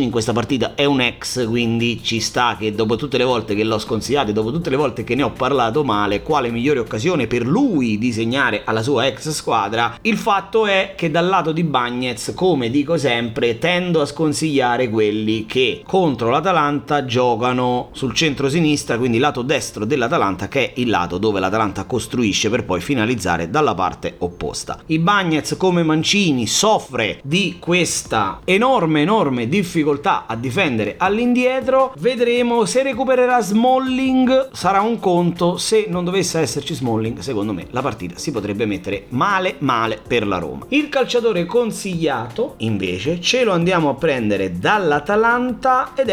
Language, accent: Italian, native